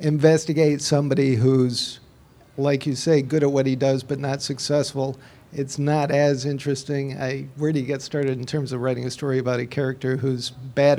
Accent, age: American, 50-69